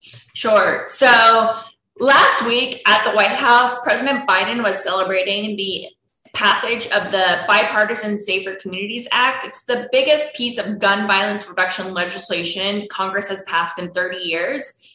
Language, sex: English, female